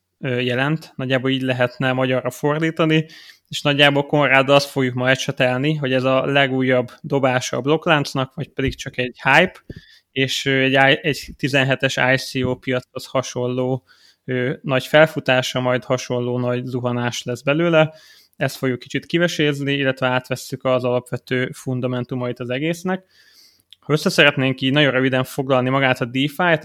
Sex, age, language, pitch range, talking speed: male, 20-39, Hungarian, 130-145 Hz, 135 wpm